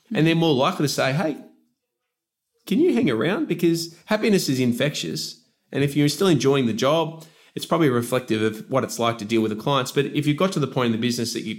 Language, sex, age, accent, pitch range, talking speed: English, male, 20-39, Australian, 105-130 Hz, 240 wpm